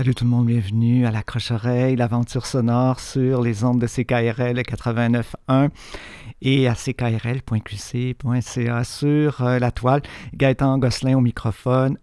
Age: 50-69